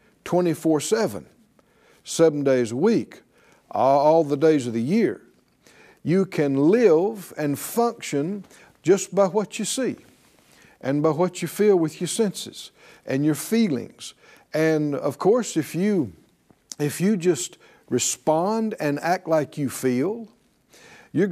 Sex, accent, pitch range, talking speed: male, American, 145-220 Hz, 125 wpm